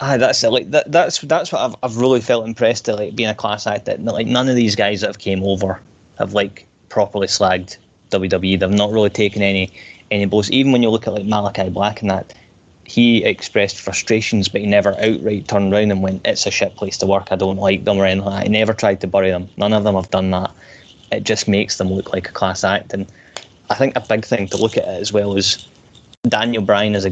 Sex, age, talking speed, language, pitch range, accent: male, 20-39, 250 wpm, English, 95-105 Hz, British